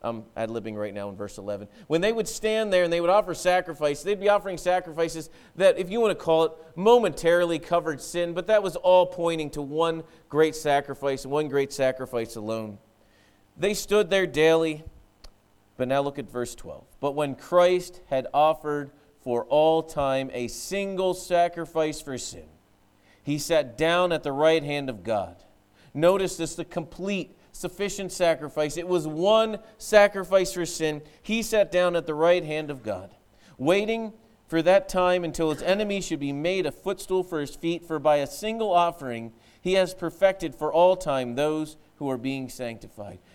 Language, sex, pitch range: English, male, 140-185 Hz